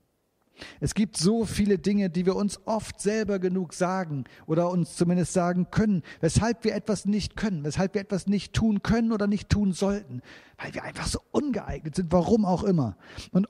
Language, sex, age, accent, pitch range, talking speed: German, male, 40-59, German, 135-195 Hz, 185 wpm